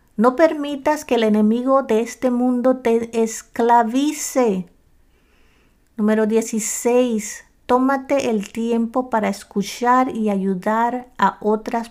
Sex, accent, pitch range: female, American, 205-255 Hz